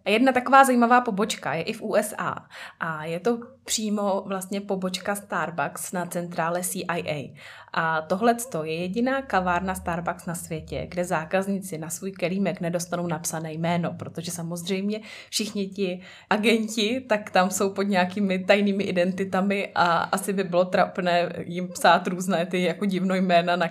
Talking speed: 150 wpm